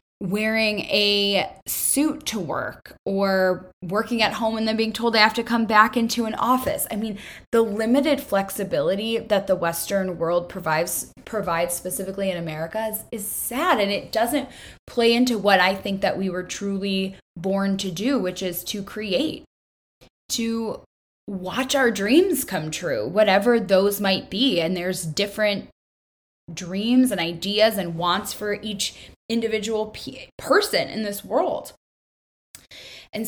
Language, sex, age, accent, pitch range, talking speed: English, female, 10-29, American, 180-220 Hz, 150 wpm